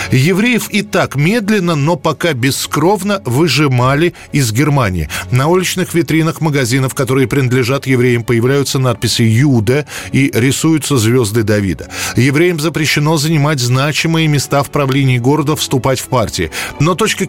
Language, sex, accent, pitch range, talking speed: Russian, male, native, 125-160 Hz, 130 wpm